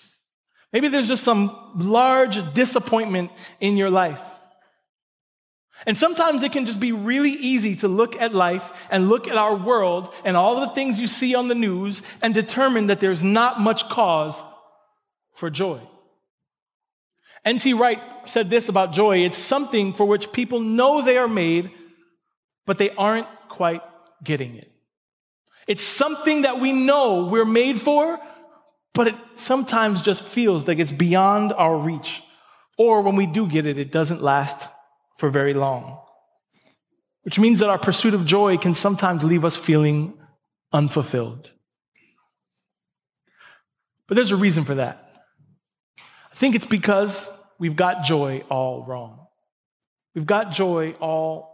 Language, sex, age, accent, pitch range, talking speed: English, male, 30-49, American, 165-235 Hz, 150 wpm